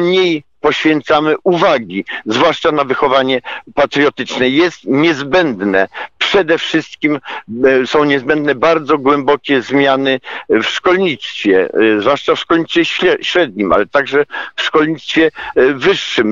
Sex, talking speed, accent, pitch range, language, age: male, 100 wpm, native, 130-175 Hz, Polish, 50-69